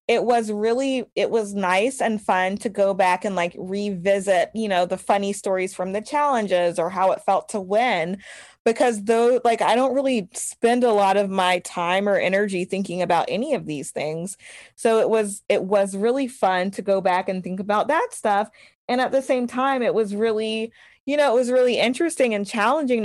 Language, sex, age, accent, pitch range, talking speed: English, female, 20-39, American, 185-240 Hz, 205 wpm